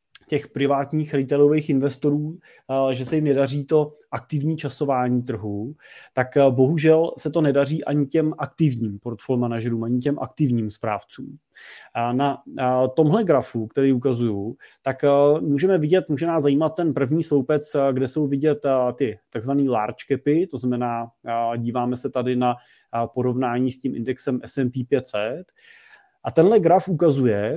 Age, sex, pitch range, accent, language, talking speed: 30-49, male, 130-155 Hz, native, Czech, 135 wpm